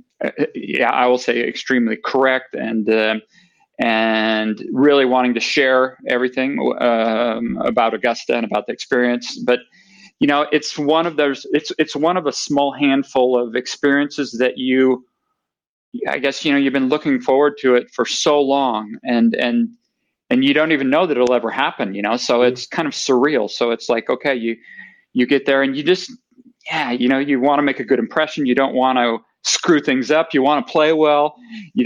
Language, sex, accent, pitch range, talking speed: English, male, American, 125-150 Hz, 195 wpm